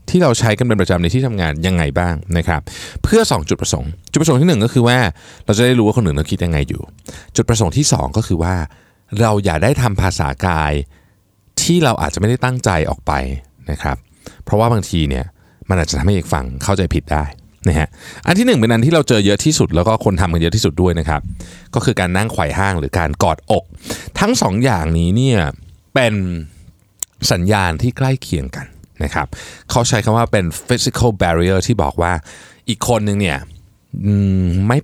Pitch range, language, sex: 80-115 Hz, Thai, male